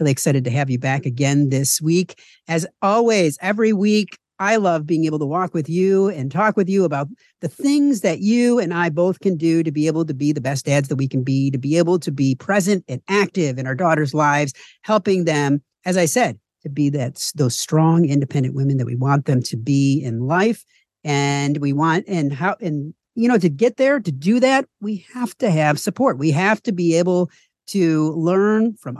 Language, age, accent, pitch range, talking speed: English, 50-69, American, 150-205 Hz, 220 wpm